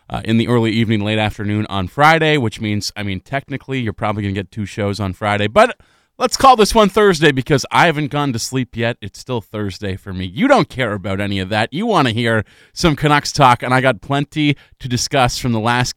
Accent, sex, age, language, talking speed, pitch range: American, male, 30-49, English, 240 wpm, 105-130 Hz